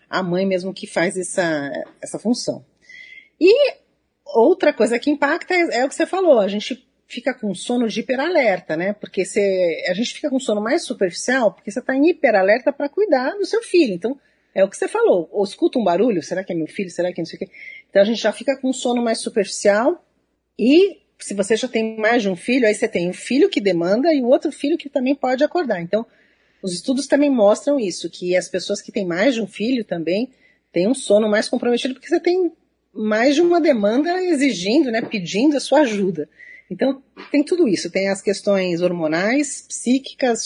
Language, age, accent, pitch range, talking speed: Portuguese, 40-59, Brazilian, 195-285 Hz, 210 wpm